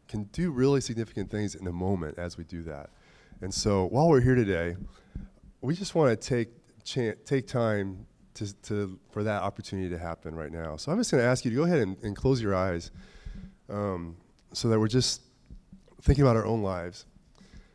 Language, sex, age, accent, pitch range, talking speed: English, male, 20-39, American, 95-125 Hz, 195 wpm